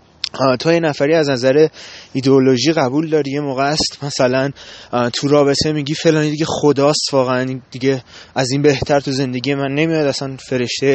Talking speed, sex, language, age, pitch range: 155 wpm, male, Persian, 20-39, 135-160 Hz